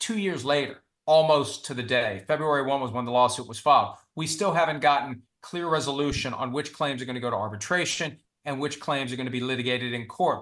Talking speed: 230 wpm